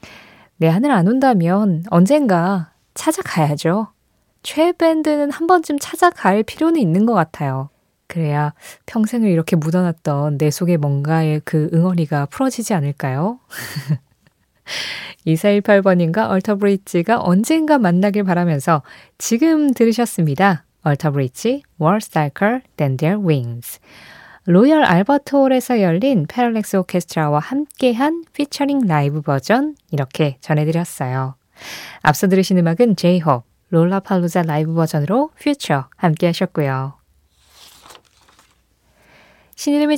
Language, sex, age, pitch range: Korean, female, 20-39, 155-240 Hz